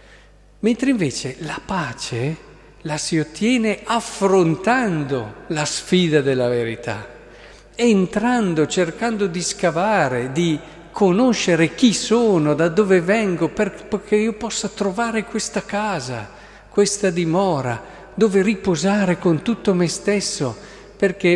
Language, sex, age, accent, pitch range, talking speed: Italian, male, 50-69, native, 135-195 Hz, 105 wpm